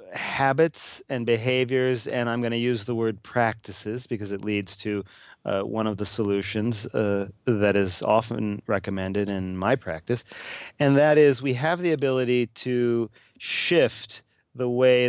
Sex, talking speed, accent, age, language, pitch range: male, 155 wpm, American, 40-59, English, 100-125 Hz